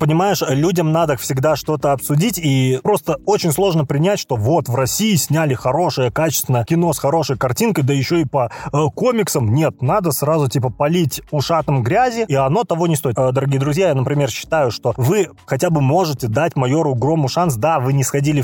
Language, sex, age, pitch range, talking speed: Russian, male, 20-39, 135-175 Hz, 190 wpm